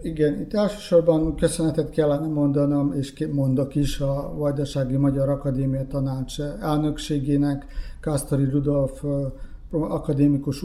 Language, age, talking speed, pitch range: Hungarian, 50-69, 100 wpm, 140-160 Hz